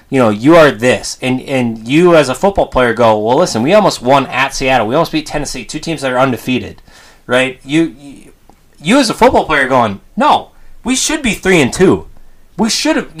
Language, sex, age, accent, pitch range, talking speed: English, male, 30-49, American, 115-160 Hz, 220 wpm